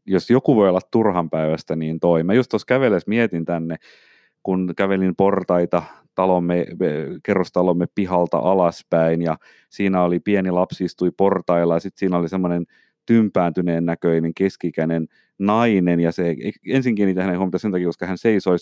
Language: Finnish